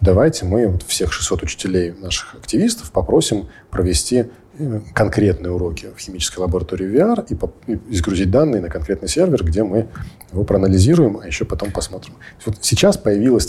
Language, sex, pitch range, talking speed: Russian, male, 90-110 Hz, 140 wpm